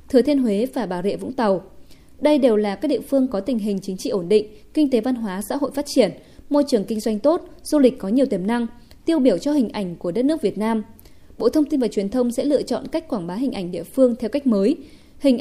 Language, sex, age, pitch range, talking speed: Vietnamese, female, 20-39, 210-270 Hz, 275 wpm